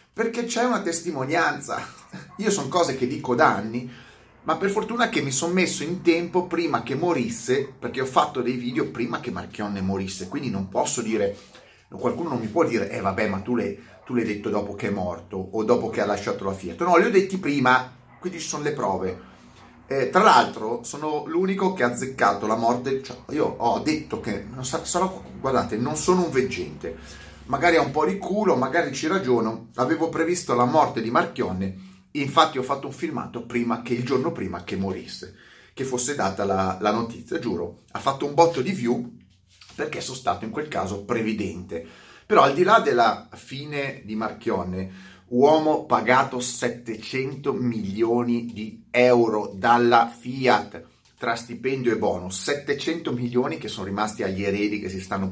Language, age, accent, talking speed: Italian, 30-49, native, 180 wpm